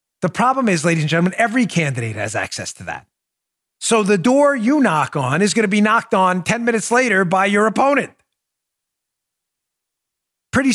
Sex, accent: male, American